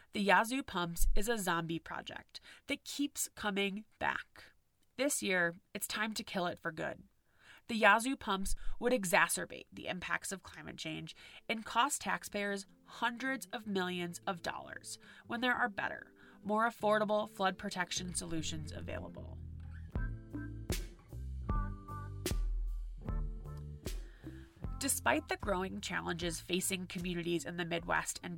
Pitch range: 170-230 Hz